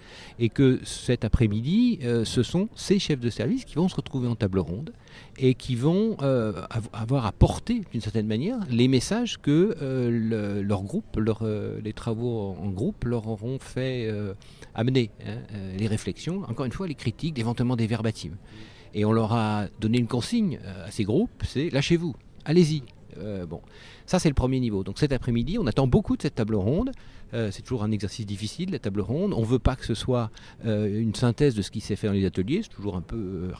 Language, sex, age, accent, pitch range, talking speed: French, male, 50-69, French, 105-140 Hz, 205 wpm